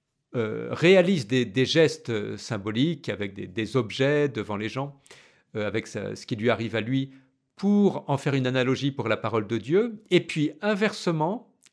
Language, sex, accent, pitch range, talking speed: French, male, French, 120-155 Hz, 165 wpm